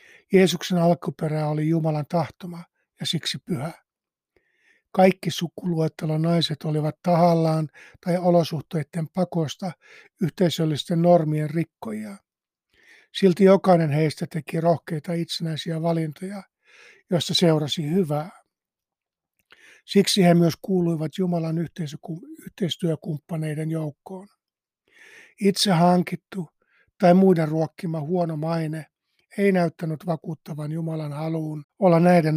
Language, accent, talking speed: Finnish, native, 95 wpm